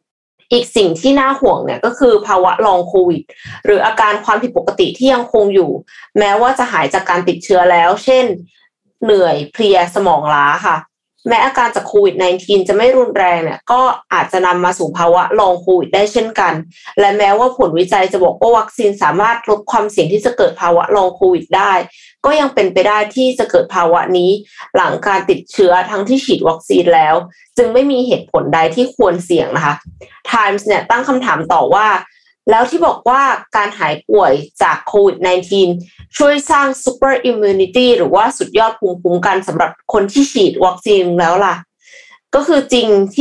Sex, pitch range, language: female, 180-260 Hz, Thai